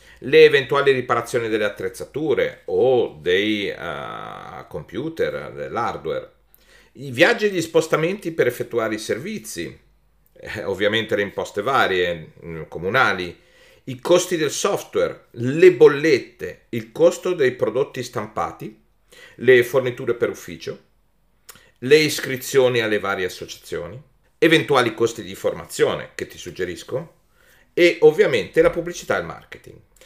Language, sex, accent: Italian, male, native